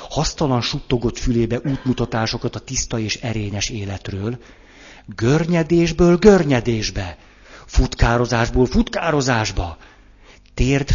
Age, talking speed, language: 50-69, 75 wpm, Hungarian